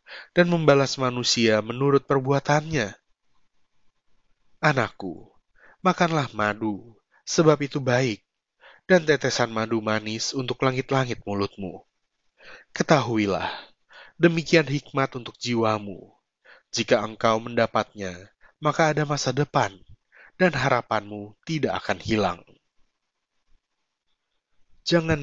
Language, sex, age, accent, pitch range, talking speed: Indonesian, male, 30-49, native, 110-145 Hz, 85 wpm